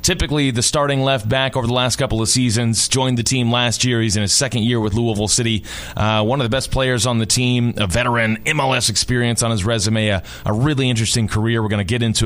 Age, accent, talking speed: 30-49, American, 245 wpm